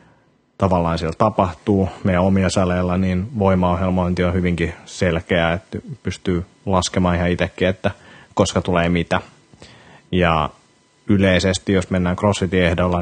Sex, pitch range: male, 85-95 Hz